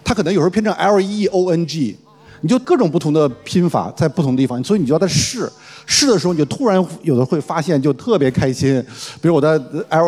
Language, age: Chinese, 50-69